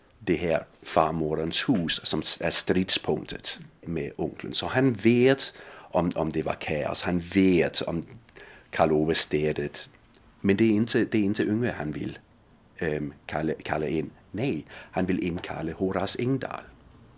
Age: 50-69